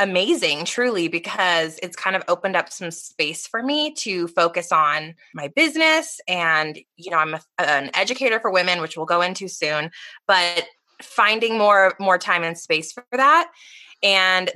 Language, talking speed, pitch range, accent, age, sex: English, 165 wpm, 170-230 Hz, American, 20-39, female